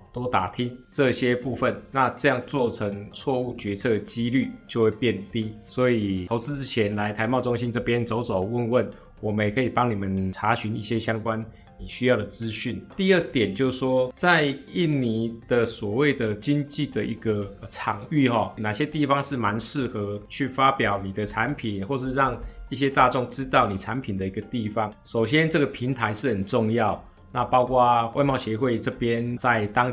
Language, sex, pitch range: Chinese, male, 105-135 Hz